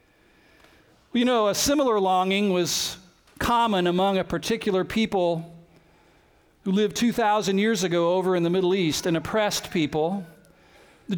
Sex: male